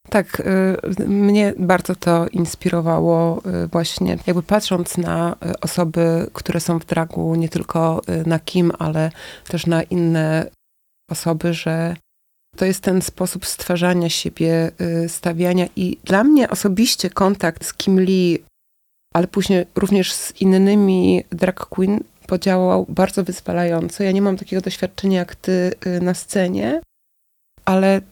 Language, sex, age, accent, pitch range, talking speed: Polish, female, 30-49, native, 170-200 Hz, 125 wpm